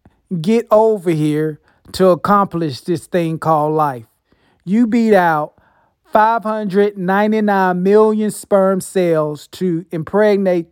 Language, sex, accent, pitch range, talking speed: English, male, American, 165-205 Hz, 100 wpm